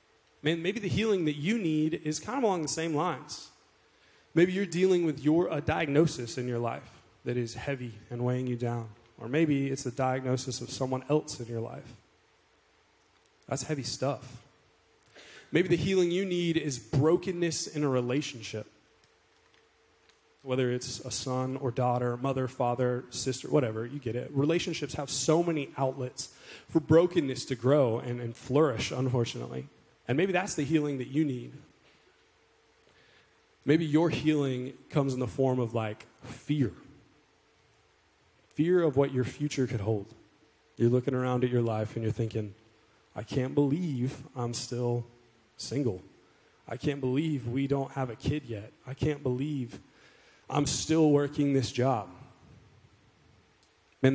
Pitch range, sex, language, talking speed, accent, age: 120-150 Hz, male, English, 155 wpm, American, 20-39